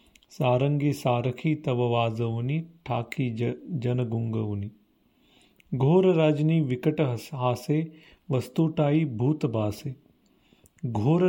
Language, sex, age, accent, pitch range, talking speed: Marathi, male, 40-59, native, 115-150 Hz, 75 wpm